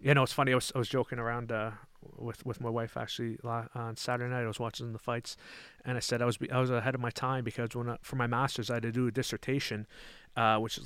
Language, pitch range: English, 115-125 Hz